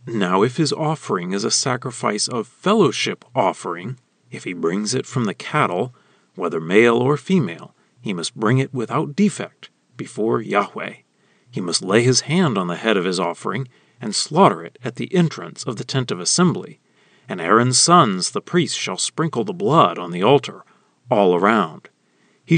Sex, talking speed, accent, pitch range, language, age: male, 175 wpm, American, 115-165 Hz, English, 40-59